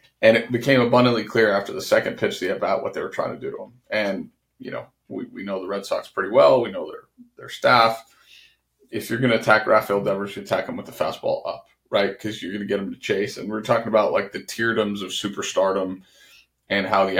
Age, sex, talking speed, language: 30-49, male, 240 wpm, English